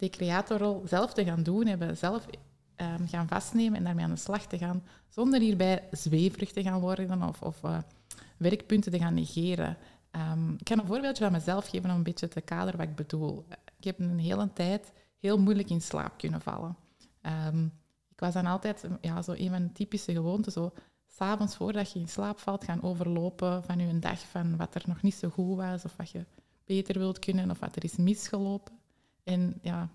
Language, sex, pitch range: Dutch, female, 175-205 Hz